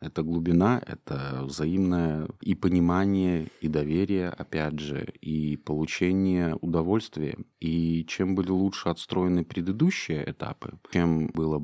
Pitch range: 75-95 Hz